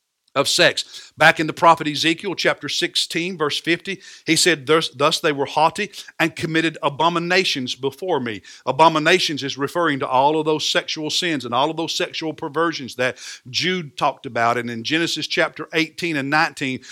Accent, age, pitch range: American, 50-69, 150-190 Hz